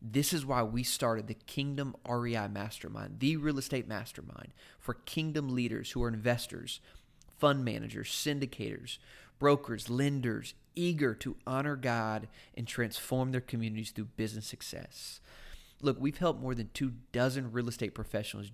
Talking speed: 145 wpm